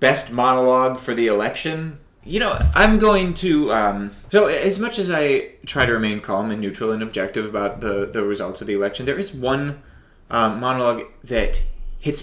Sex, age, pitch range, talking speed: male, 20-39, 100-140 Hz, 185 wpm